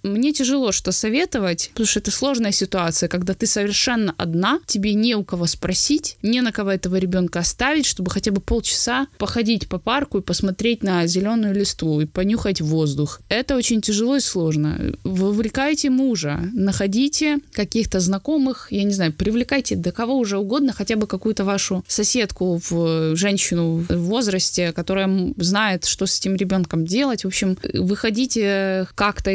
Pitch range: 180-240 Hz